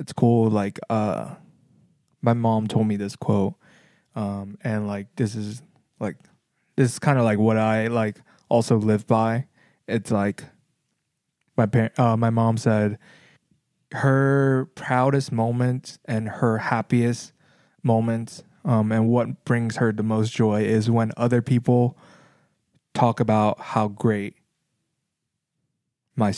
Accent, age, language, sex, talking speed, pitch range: American, 20-39, English, male, 135 wpm, 110-125 Hz